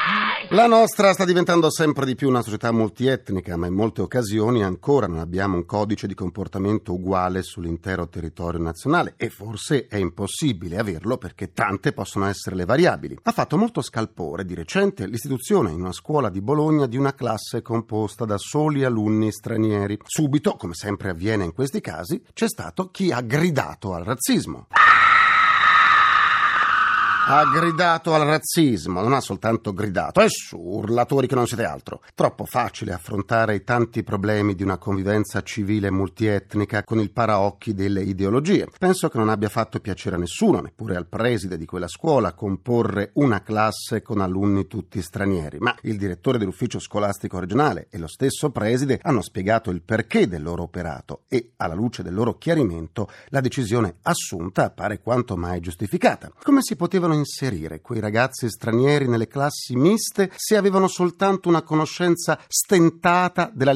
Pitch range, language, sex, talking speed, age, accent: 100-150 Hz, Italian, male, 160 wpm, 40-59, native